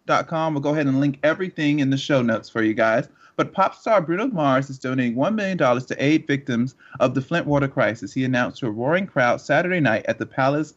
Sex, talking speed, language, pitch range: male, 235 wpm, English, 120-150 Hz